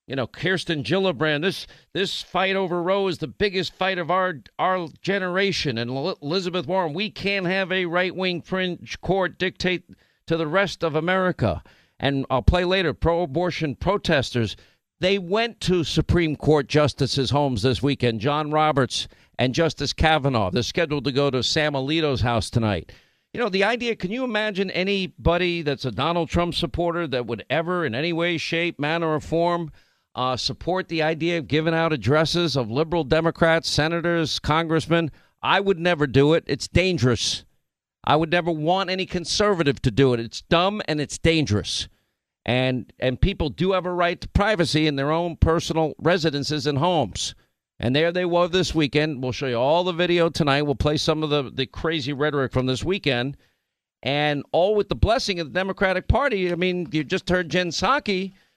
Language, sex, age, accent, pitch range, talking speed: English, male, 50-69, American, 140-180 Hz, 180 wpm